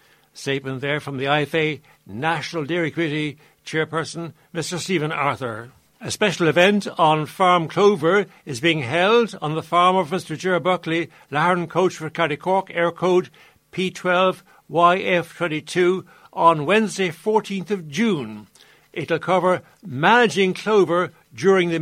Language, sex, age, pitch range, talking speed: English, male, 60-79, 155-190 Hz, 130 wpm